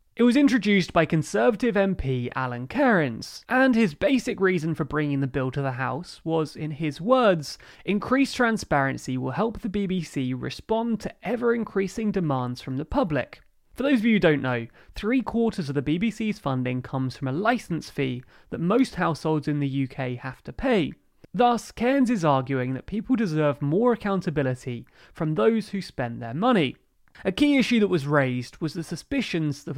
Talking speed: 175 wpm